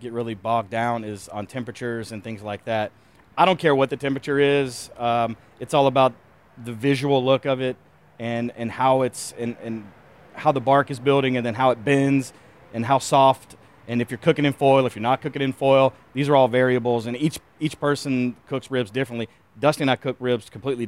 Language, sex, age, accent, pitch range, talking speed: English, male, 30-49, American, 115-135 Hz, 215 wpm